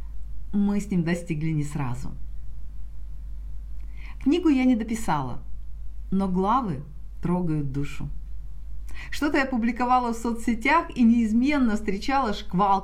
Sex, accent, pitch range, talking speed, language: female, native, 140-220 Hz, 105 wpm, Russian